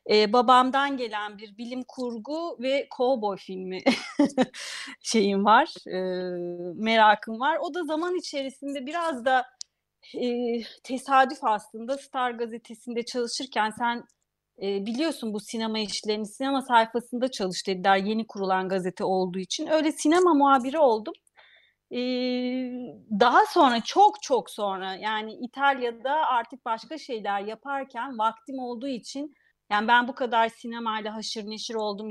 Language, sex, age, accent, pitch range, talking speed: Turkish, female, 30-49, native, 210-275 Hz, 125 wpm